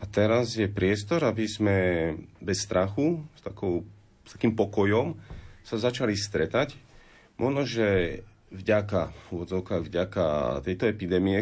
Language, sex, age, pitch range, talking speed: Slovak, male, 30-49, 90-110 Hz, 110 wpm